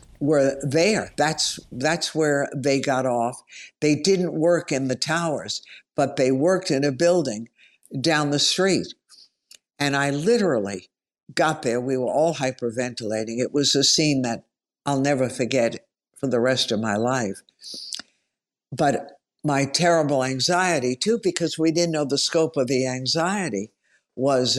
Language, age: English, 60-79